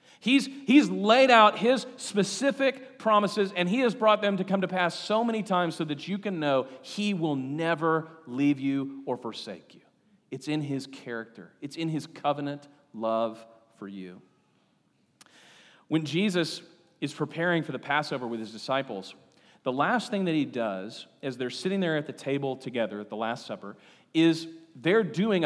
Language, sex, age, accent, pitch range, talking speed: English, male, 40-59, American, 135-195 Hz, 175 wpm